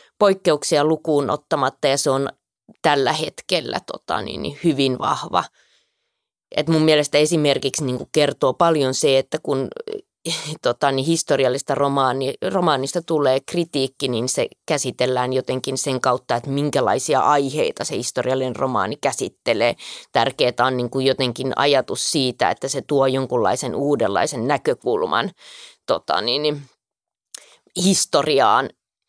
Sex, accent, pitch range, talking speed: female, native, 135-155 Hz, 95 wpm